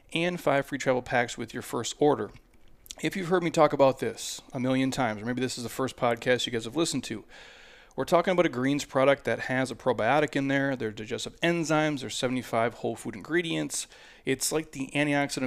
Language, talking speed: English, 215 wpm